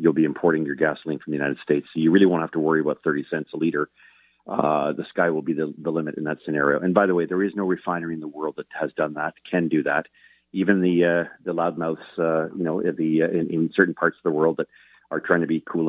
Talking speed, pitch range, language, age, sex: 275 wpm, 75-85 Hz, English, 40-59, male